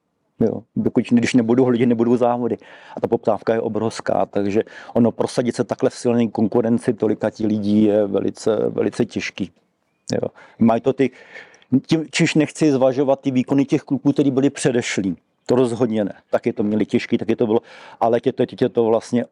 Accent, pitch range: native, 105-120 Hz